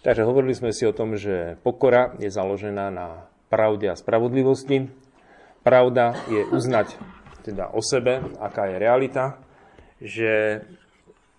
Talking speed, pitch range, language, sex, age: 125 wpm, 95-115 Hz, Slovak, male, 40-59